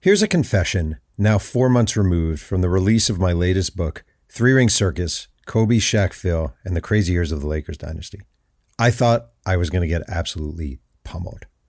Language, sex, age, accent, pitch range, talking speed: English, male, 50-69, American, 85-125 Hz, 185 wpm